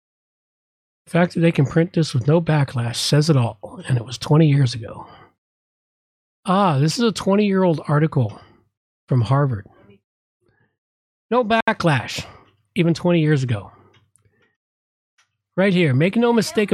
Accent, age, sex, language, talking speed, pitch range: American, 40-59, male, English, 135 wpm, 125-175 Hz